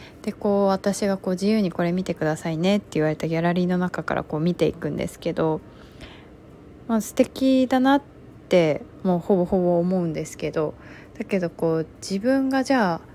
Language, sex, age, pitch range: Japanese, female, 20-39, 170-225 Hz